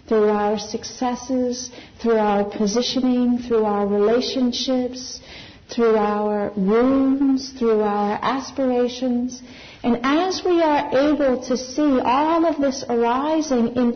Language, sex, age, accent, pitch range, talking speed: English, female, 50-69, American, 225-275 Hz, 115 wpm